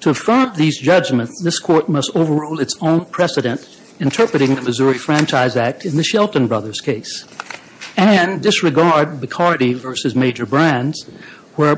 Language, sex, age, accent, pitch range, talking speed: English, male, 60-79, American, 130-175 Hz, 145 wpm